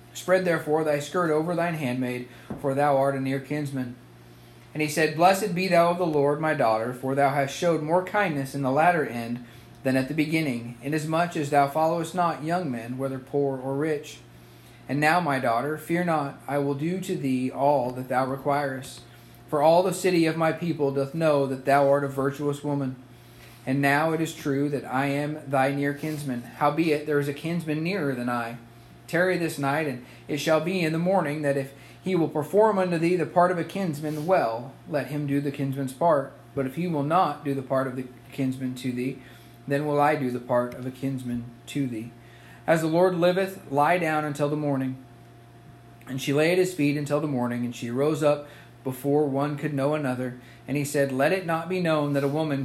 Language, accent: English, American